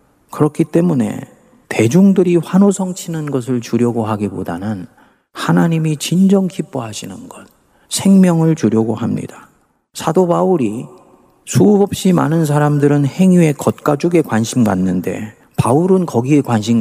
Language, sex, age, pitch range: Korean, male, 40-59, 115-170 Hz